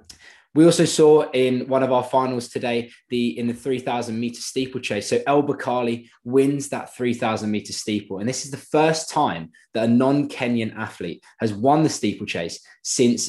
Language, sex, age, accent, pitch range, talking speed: English, male, 20-39, British, 110-135 Hz, 175 wpm